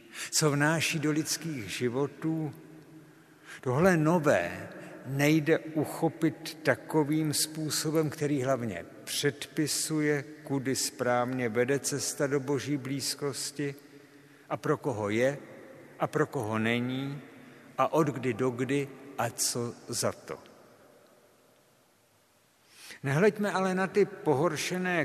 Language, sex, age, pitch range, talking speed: Czech, male, 60-79, 130-155 Hz, 105 wpm